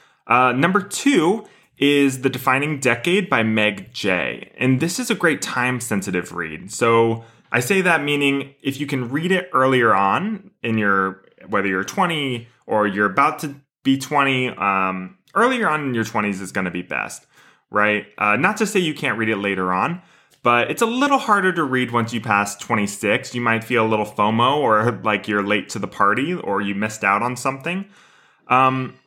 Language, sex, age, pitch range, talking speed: English, male, 20-39, 110-150 Hz, 190 wpm